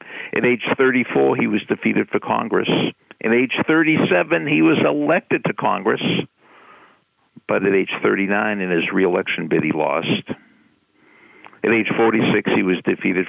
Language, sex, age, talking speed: English, male, 60-79, 145 wpm